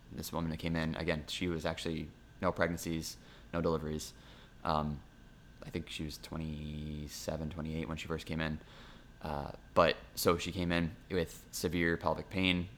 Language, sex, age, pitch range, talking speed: English, male, 20-39, 80-85 Hz, 175 wpm